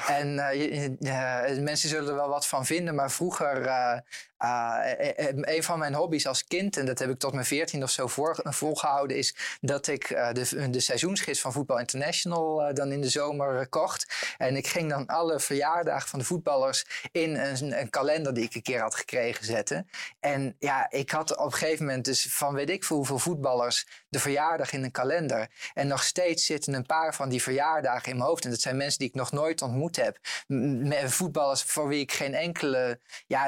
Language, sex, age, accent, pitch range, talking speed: English, male, 20-39, Dutch, 130-150 Hz, 210 wpm